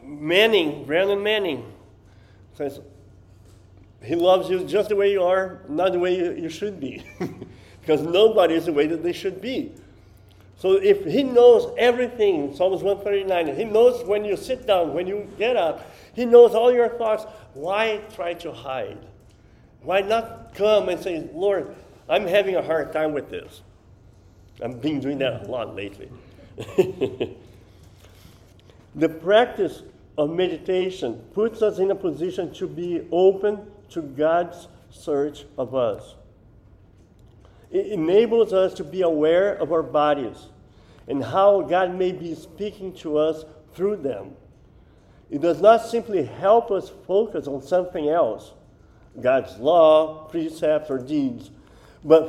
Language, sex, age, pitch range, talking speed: English, male, 50-69, 140-205 Hz, 145 wpm